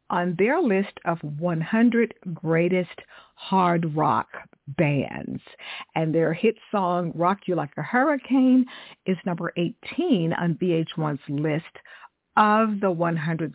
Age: 50-69